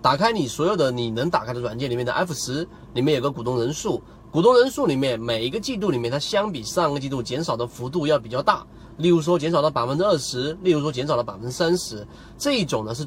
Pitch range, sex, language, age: 120-175 Hz, male, Chinese, 30-49